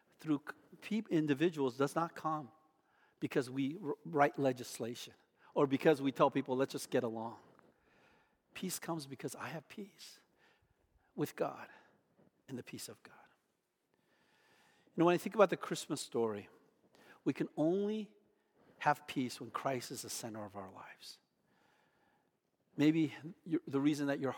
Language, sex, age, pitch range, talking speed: English, male, 50-69, 130-160 Hz, 145 wpm